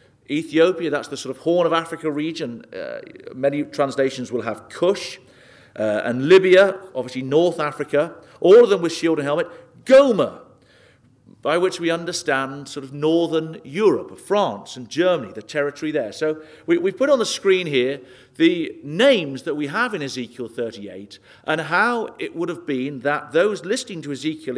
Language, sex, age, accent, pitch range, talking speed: English, male, 50-69, British, 125-165 Hz, 170 wpm